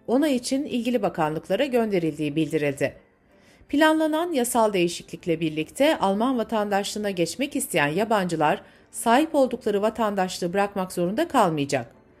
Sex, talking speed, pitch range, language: female, 105 wpm, 160-245 Hz, Turkish